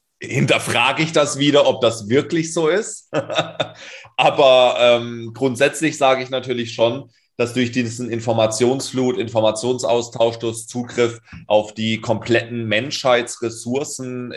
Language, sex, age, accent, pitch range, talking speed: German, male, 30-49, German, 100-125 Hz, 110 wpm